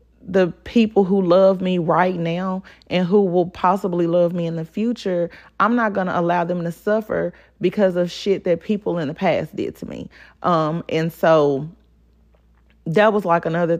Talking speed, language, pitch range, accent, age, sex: 185 wpm, English, 145-185 Hz, American, 30-49, female